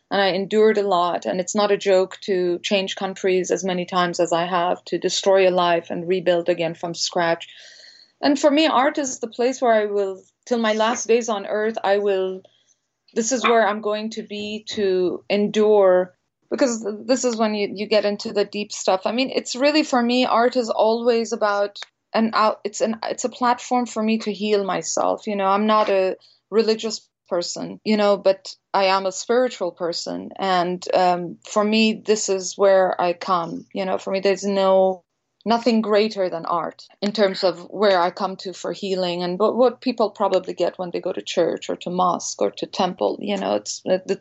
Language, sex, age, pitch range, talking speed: English, female, 20-39, 185-215 Hz, 205 wpm